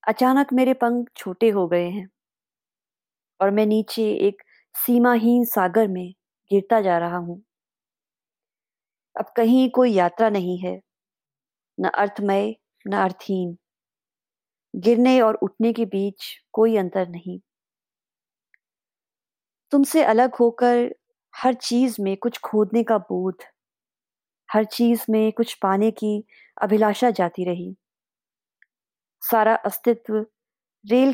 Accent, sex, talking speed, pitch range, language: native, female, 110 wpm, 195-240 Hz, Hindi